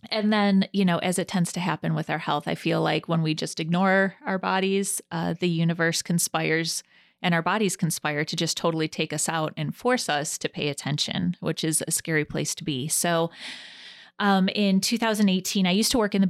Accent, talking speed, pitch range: American, 215 wpm, 160-195 Hz